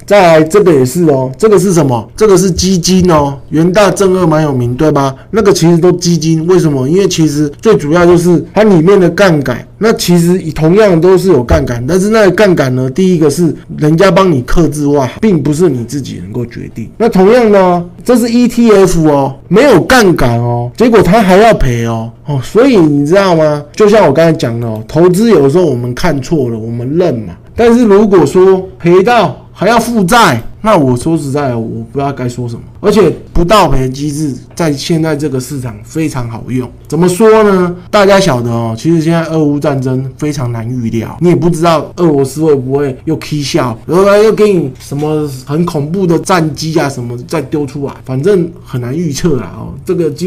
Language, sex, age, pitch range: Chinese, male, 20-39, 130-185 Hz